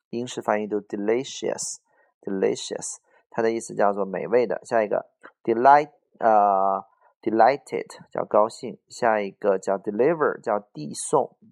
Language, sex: Chinese, male